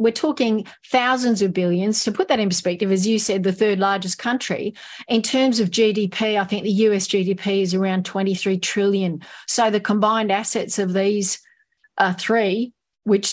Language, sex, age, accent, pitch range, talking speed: English, female, 40-59, Australian, 190-230 Hz, 175 wpm